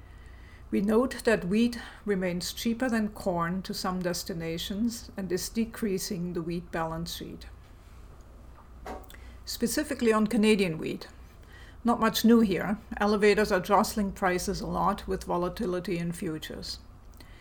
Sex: female